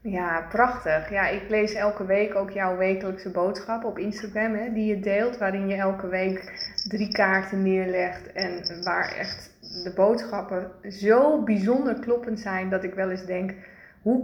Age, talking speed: 20-39, 160 wpm